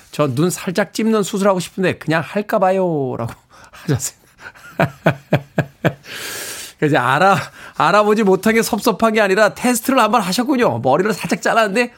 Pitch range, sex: 150-200 Hz, male